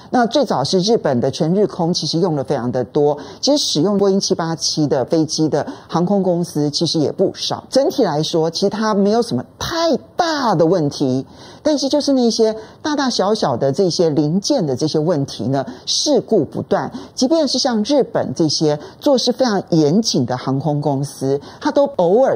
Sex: male